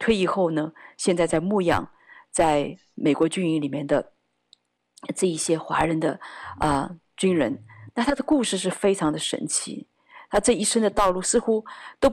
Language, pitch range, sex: Chinese, 160-210 Hz, female